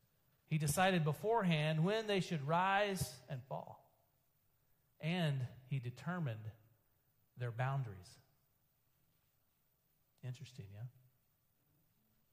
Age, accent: 40-59, American